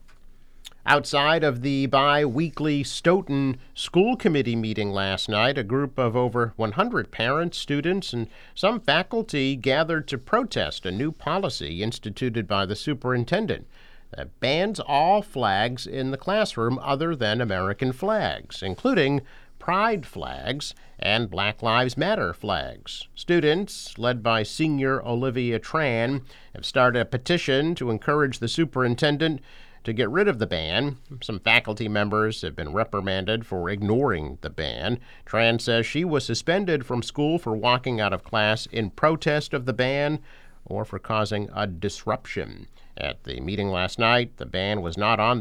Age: 50-69